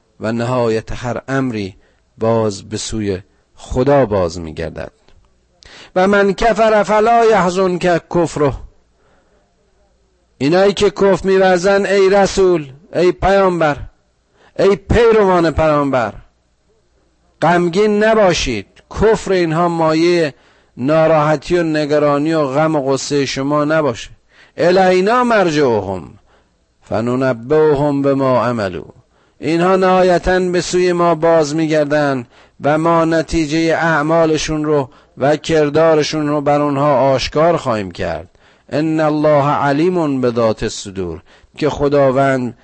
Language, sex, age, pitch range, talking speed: Persian, male, 50-69, 130-175 Hz, 110 wpm